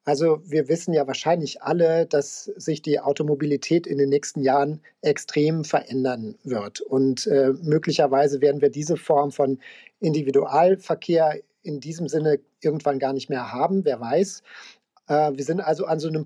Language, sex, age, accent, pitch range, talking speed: German, male, 40-59, German, 145-185 Hz, 160 wpm